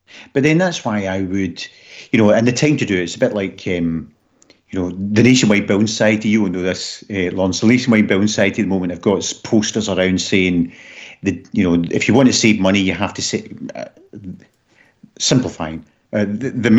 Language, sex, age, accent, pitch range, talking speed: English, male, 40-59, British, 95-115 Hz, 210 wpm